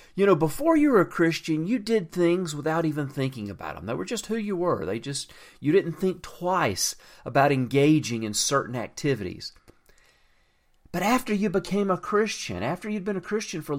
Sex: male